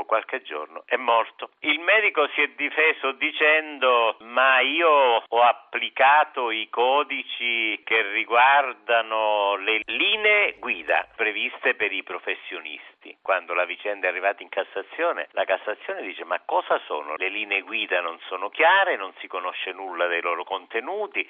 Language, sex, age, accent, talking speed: Italian, male, 50-69, native, 140 wpm